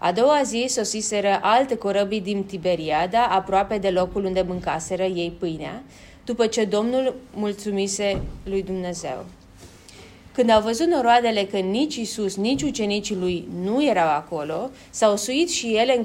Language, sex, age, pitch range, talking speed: Romanian, female, 30-49, 175-225 Hz, 145 wpm